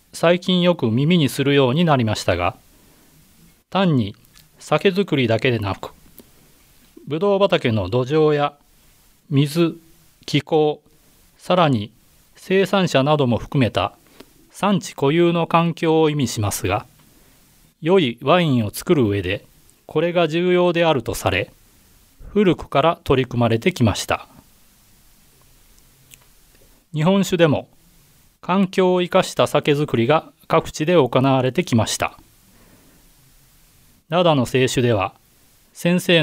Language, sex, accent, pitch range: Japanese, male, native, 125-170 Hz